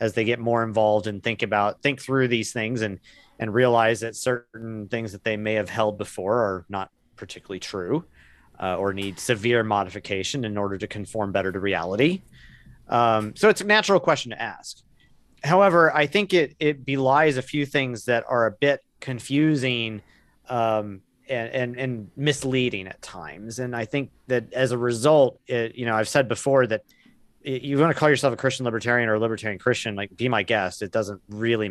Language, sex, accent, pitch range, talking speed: English, male, American, 110-130 Hz, 195 wpm